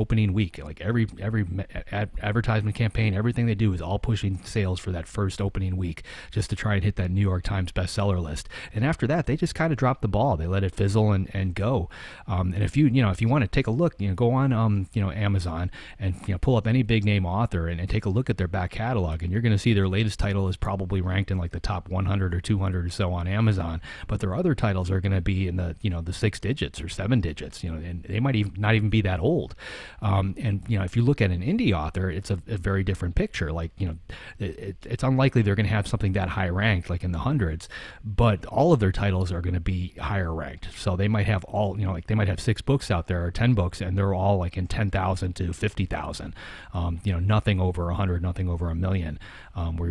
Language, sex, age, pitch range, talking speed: English, male, 30-49, 90-110 Hz, 265 wpm